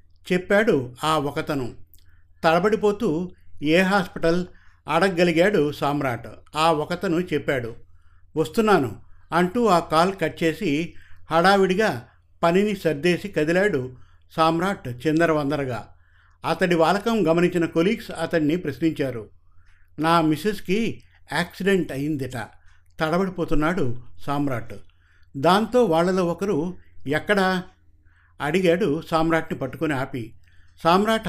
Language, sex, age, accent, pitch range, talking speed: Telugu, male, 50-69, native, 120-180 Hz, 85 wpm